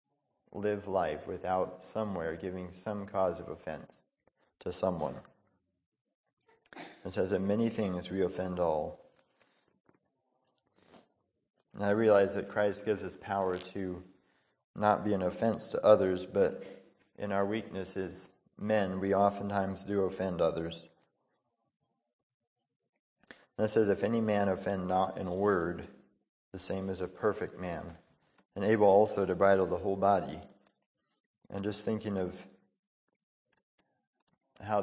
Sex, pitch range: male, 90-100 Hz